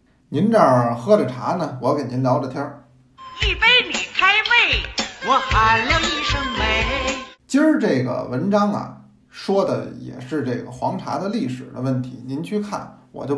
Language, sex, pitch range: Chinese, male, 125-165 Hz